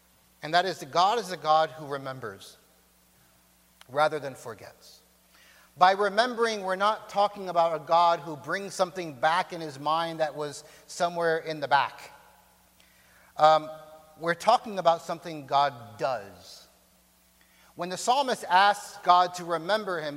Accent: American